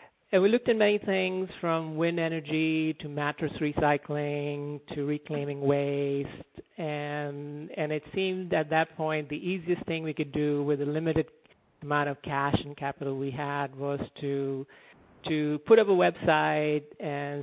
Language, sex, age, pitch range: English, male, 50-69, 145-160 Hz